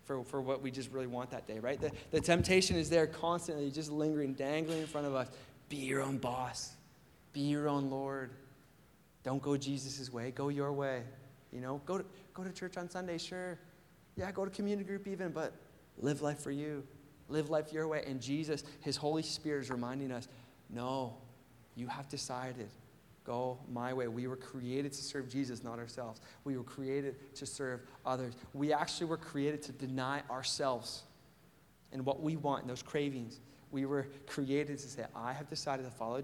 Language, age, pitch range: English, 20-39, 130-155 Hz